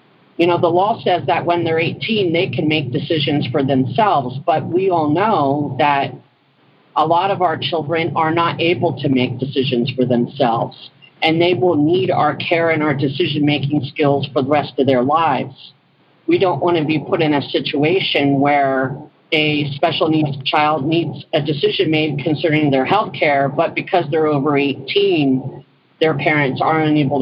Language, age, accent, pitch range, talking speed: English, 50-69, American, 140-175 Hz, 175 wpm